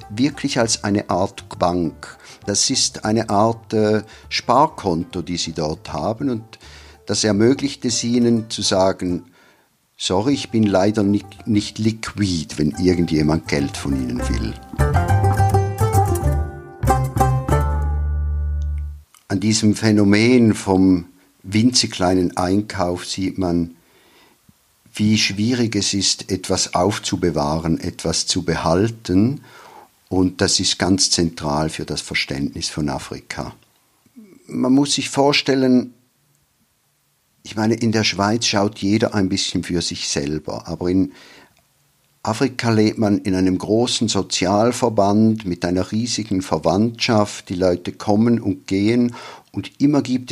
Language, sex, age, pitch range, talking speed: German, male, 50-69, 90-115 Hz, 120 wpm